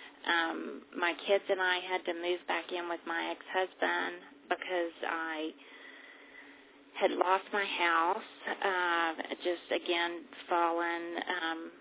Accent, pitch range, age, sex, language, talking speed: American, 170-190 Hz, 30-49, female, English, 120 wpm